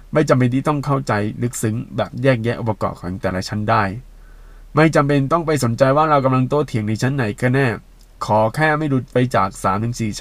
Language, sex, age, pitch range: Thai, male, 20-39, 110-140 Hz